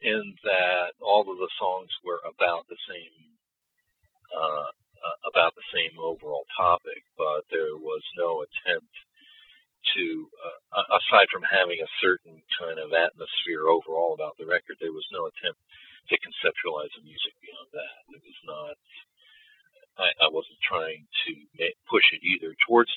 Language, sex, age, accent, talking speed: English, male, 50-69, American, 155 wpm